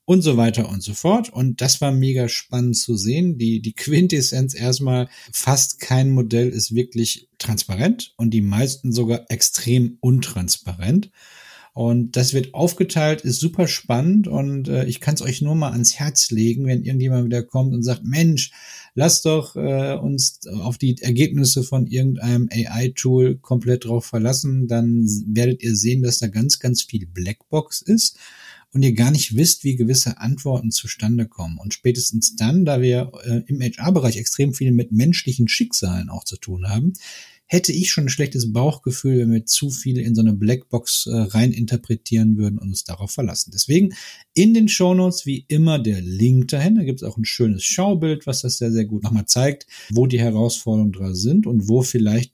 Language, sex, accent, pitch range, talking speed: German, male, German, 115-140 Hz, 180 wpm